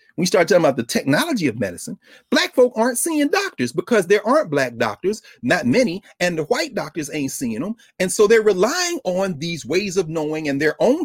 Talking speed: 210 wpm